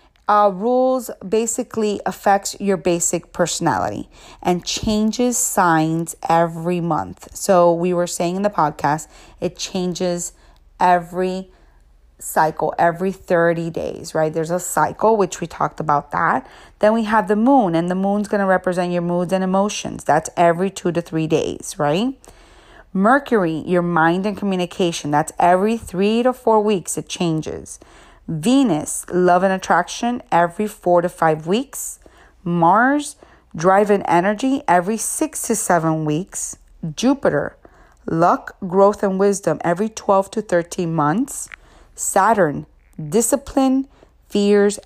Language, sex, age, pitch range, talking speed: English, female, 30-49, 170-210 Hz, 135 wpm